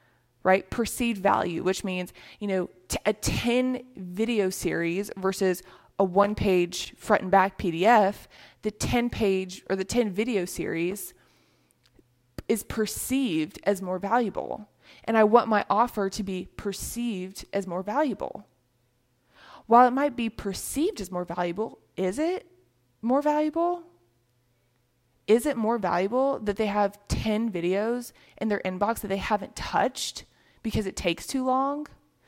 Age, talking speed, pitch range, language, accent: 20-39, 140 wpm, 180-230 Hz, English, American